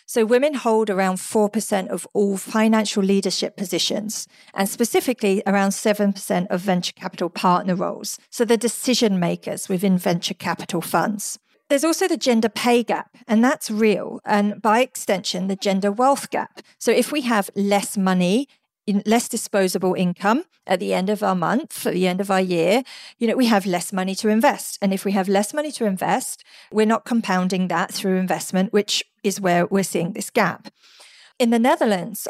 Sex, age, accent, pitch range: female, 40-59, British, 190-235 Hz